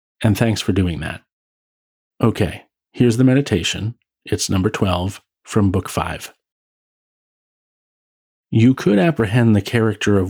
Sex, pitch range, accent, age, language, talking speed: male, 90-115 Hz, American, 40-59, English, 120 wpm